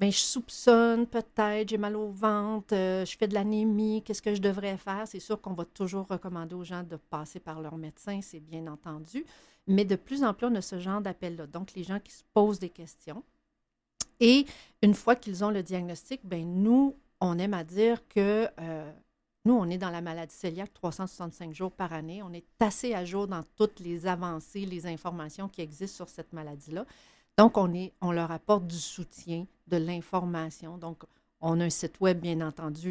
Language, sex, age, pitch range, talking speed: French, female, 40-59, 170-210 Hz, 205 wpm